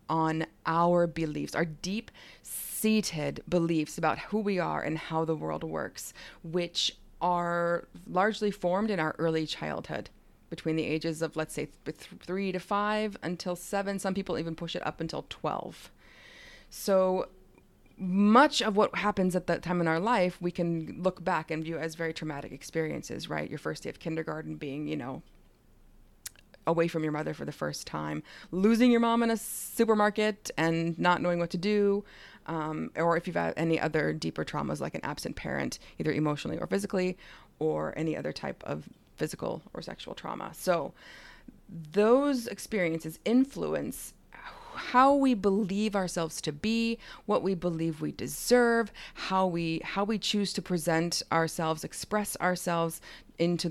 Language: English